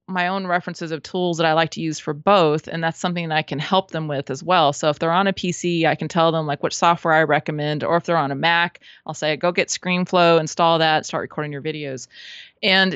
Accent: American